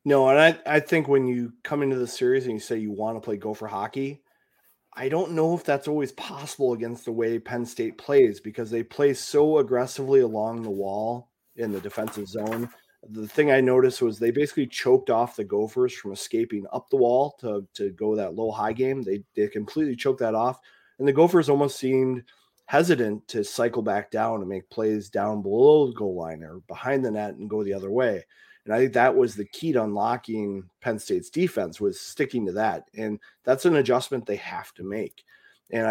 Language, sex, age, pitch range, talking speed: English, male, 30-49, 105-140 Hz, 210 wpm